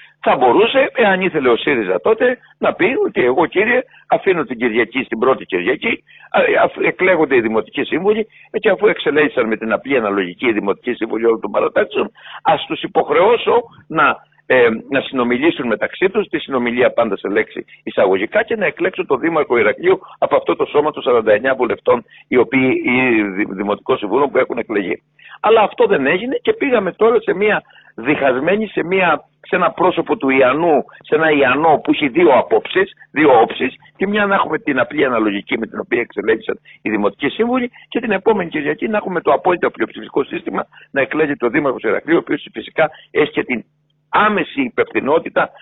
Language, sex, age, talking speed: Greek, male, 60-79, 175 wpm